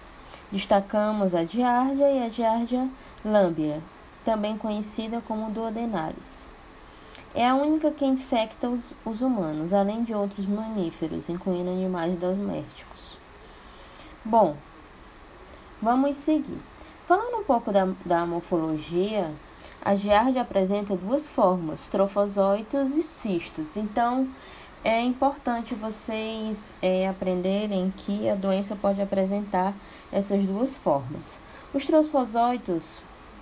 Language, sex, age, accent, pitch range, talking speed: Portuguese, female, 20-39, Brazilian, 190-245 Hz, 105 wpm